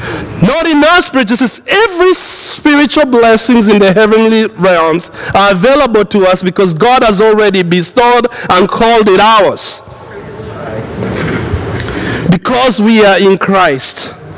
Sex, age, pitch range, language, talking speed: male, 50-69, 180-245 Hz, English, 120 wpm